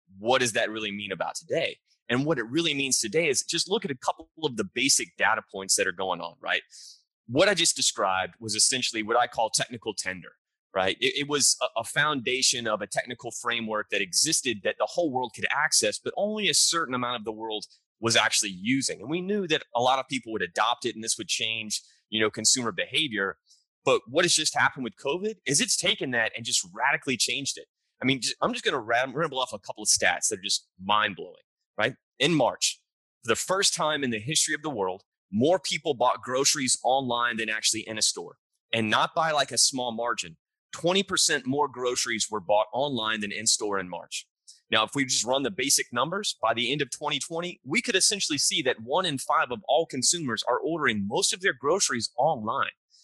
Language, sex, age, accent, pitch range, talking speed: English, male, 30-49, American, 110-160 Hz, 220 wpm